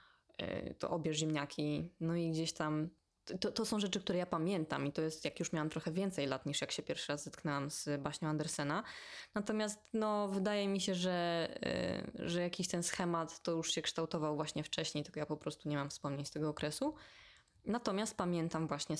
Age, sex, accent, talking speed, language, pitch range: 20-39, female, native, 195 wpm, Polish, 155-190 Hz